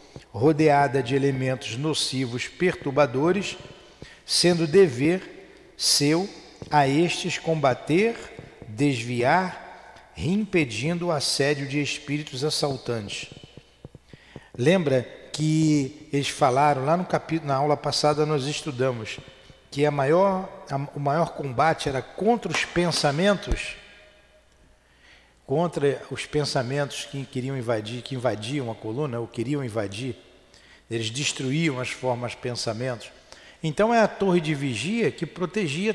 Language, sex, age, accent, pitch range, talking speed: Portuguese, male, 50-69, Brazilian, 130-180 Hz, 110 wpm